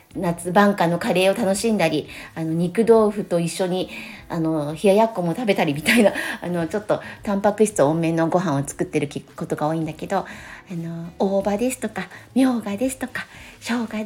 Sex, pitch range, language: female, 170-235 Hz, Japanese